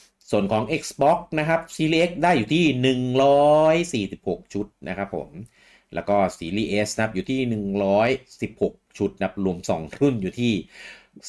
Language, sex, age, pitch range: Thai, male, 30-49, 95-130 Hz